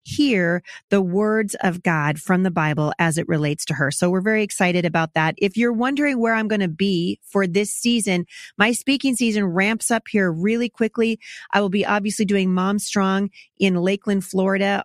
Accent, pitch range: American, 180-220 Hz